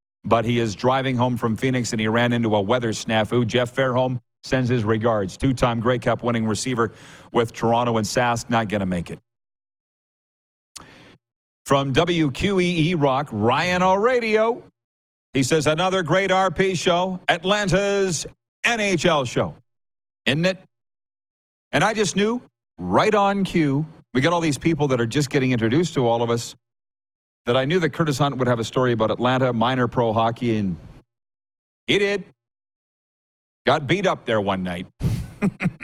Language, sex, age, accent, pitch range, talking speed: English, male, 40-59, American, 115-160 Hz, 155 wpm